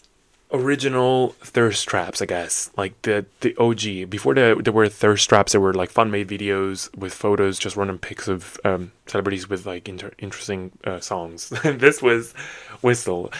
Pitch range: 95-125 Hz